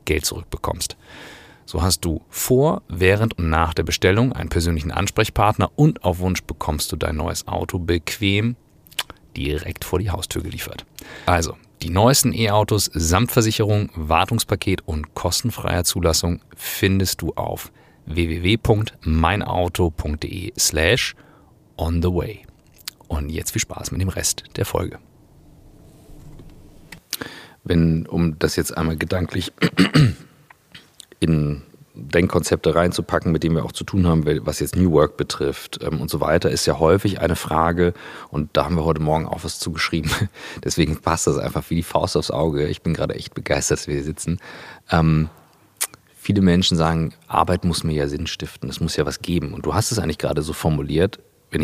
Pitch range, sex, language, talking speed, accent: 80-95 Hz, male, German, 155 wpm, German